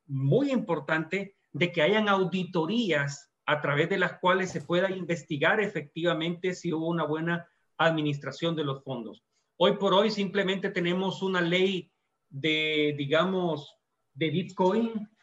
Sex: male